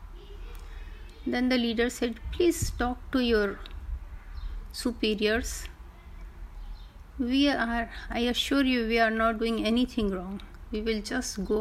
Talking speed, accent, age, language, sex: 125 wpm, native, 30-49, Hindi, female